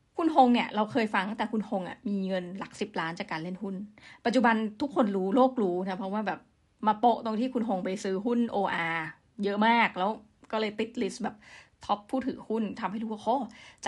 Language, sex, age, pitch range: Thai, female, 20-39, 195-245 Hz